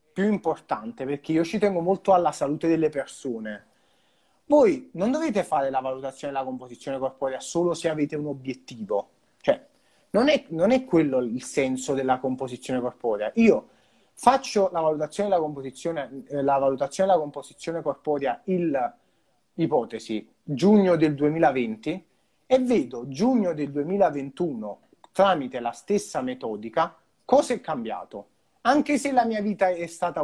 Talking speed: 140 wpm